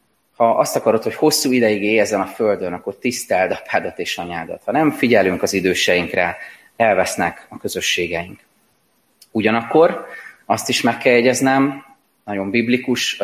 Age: 30-49